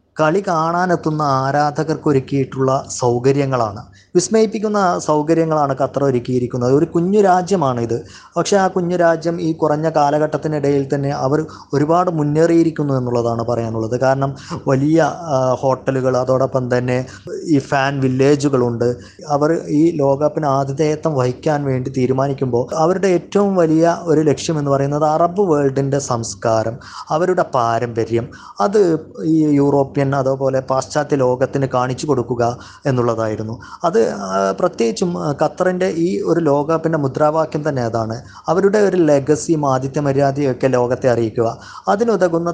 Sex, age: male, 20-39